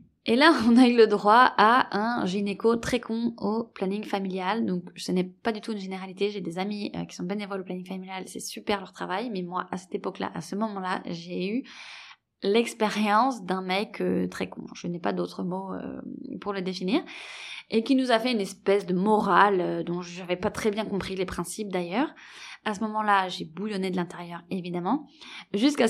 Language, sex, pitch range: French, female, 180-220 Hz